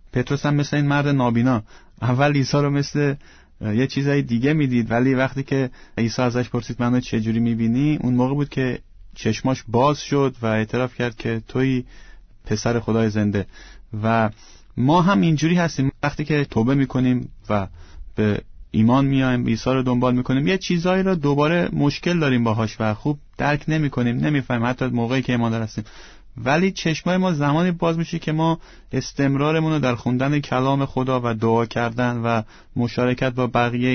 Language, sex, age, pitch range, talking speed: Persian, male, 30-49, 115-145 Hz, 170 wpm